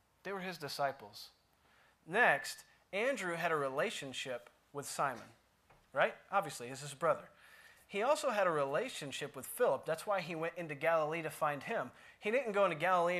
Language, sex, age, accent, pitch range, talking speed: English, male, 30-49, American, 135-175 Hz, 170 wpm